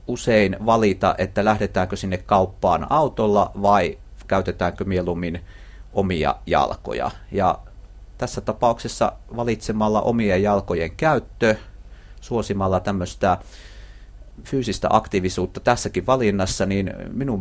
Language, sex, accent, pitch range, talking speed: Finnish, male, native, 95-110 Hz, 90 wpm